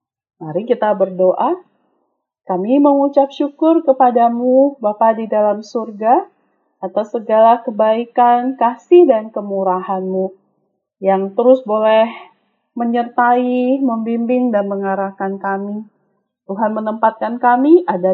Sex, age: female, 30-49